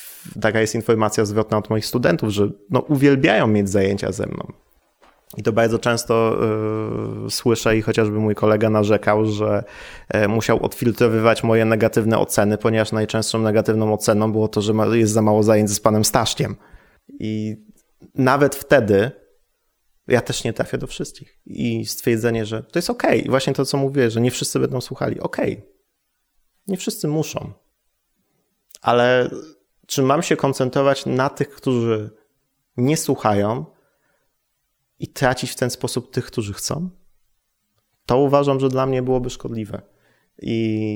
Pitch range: 105-130 Hz